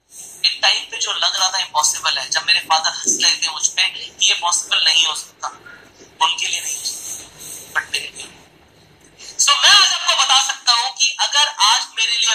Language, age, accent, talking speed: Hindi, 30-49, native, 70 wpm